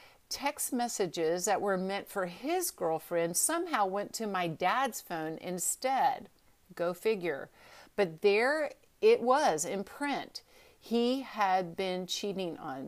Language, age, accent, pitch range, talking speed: English, 50-69, American, 175-240 Hz, 130 wpm